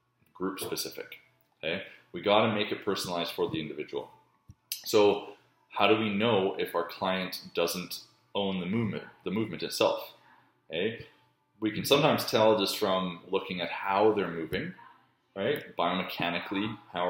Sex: male